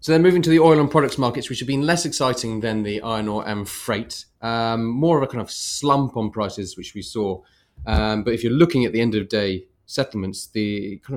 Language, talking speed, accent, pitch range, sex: English, 245 wpm, British, 100-120 Hz, male